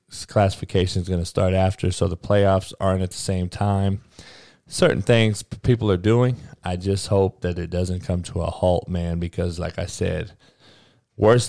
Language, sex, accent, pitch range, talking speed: English, male, American, 90-115 Hz, 185 wpm